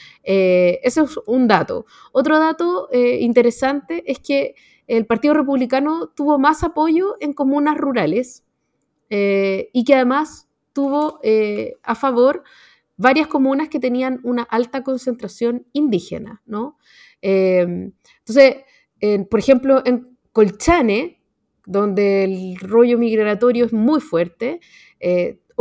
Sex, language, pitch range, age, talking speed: female, Spanish, 220-280 Hz, 30-49, 120 wpm